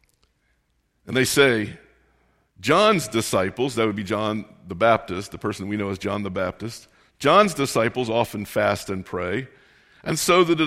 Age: 50-69